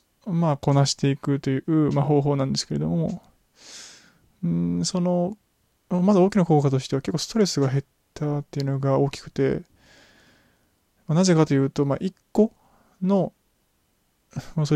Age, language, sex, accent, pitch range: 20-39, Japanese, male, native, 140-180 Hz